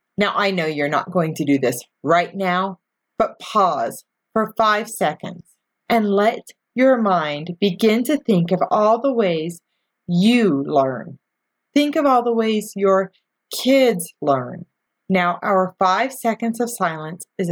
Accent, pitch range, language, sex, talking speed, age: American, 180-245 Hz, English, female, 150 wpm, 40-59